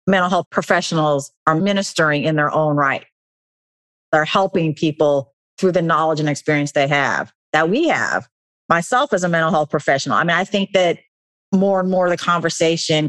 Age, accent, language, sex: 40-59, American, English, female